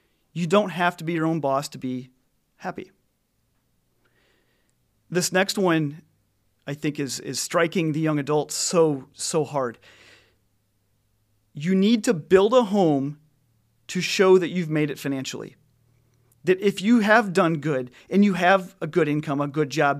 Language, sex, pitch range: English, male, 135-190 Hz